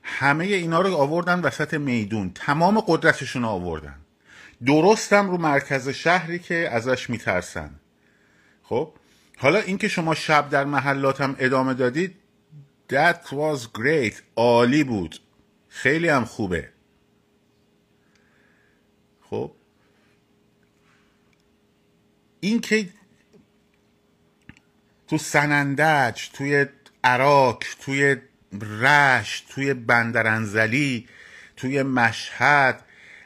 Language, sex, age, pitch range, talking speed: Persian, male, 50-69, 110-150 Hz, 85 wpm